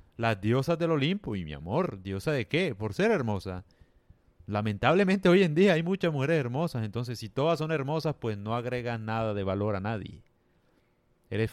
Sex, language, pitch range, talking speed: male, Spanish, 105-145 Hz, 180 wpm